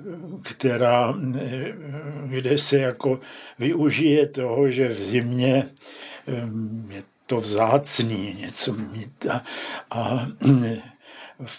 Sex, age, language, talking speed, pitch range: male, 60-79, Czech, 90 wpm, 115-140 Hz